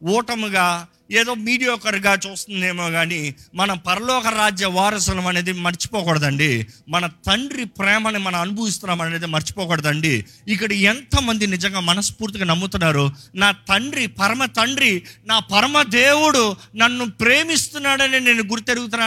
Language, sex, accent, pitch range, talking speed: Telugu, male, native, 155-245 Hz, 110 wpm